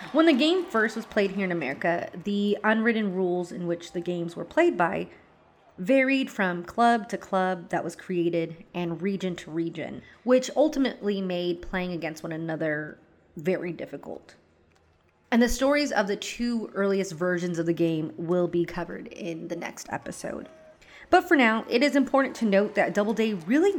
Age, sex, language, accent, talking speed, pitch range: 30-49, female, English, American, 175 wpm, 175-240 Hz